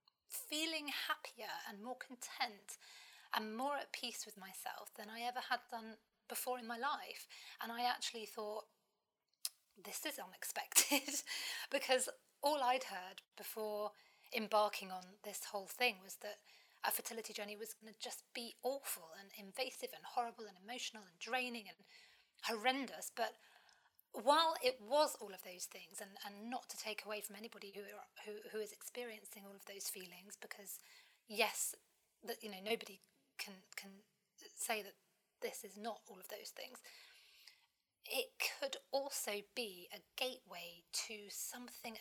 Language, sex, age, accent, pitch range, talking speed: English, female, 30-49, British, 205-250 Hz, 155 wpm